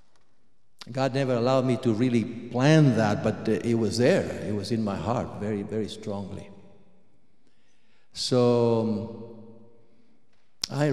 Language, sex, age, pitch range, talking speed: English, male, 60-79, 110-135 Hz, 120 wpm